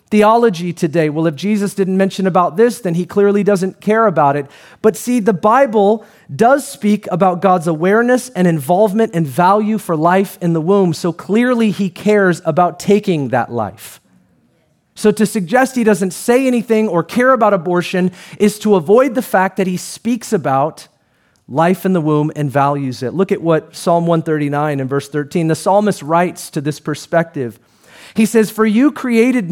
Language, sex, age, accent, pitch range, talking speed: English, male, 30-49, American, 155-205 Hz, 180 wpm